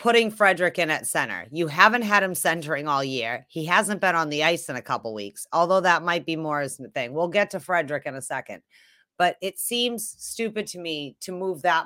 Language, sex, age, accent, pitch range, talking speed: English, female, 30-49, American, 150-205 Hz, 240 wpm